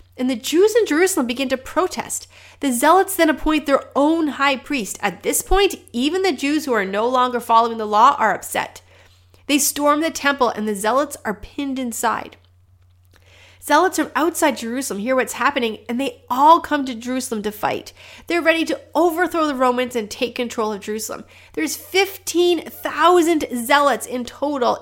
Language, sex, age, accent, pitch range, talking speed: English, female, 30-49, American, 230-305 Hz, 175 wpm